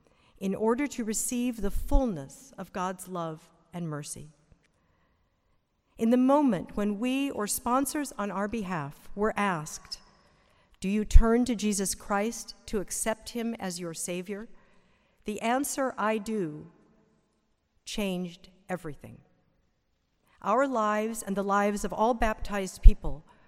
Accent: American